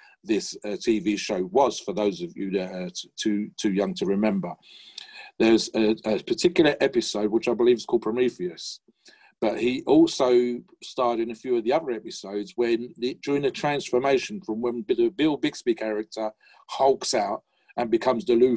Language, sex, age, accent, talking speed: English, male, 50-69, British, 180 wpm